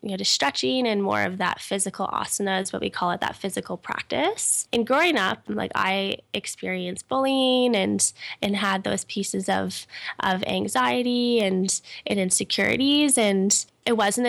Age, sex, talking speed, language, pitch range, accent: 10-29, female, 160 wpm, English, 190-220 Hz, American